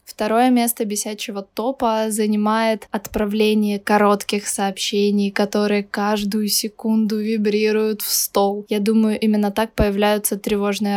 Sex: female